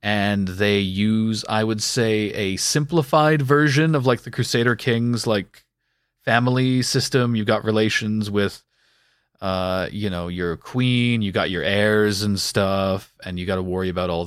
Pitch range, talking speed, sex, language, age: 95-120 Hz, 165 wpm, male, English, 30-49